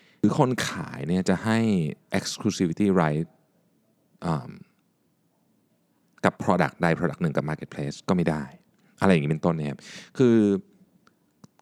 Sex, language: male, Thai